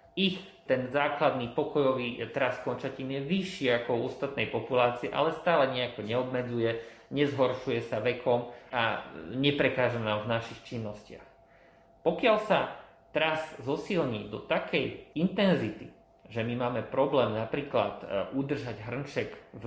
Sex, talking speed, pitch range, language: male, 120 wpm, 115-135 Hz, Slovak